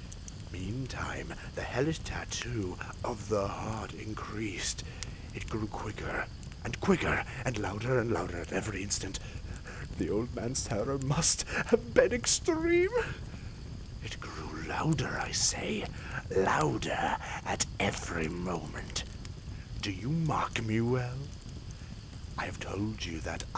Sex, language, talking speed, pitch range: male, English, 120 wpm, 95-125 Hz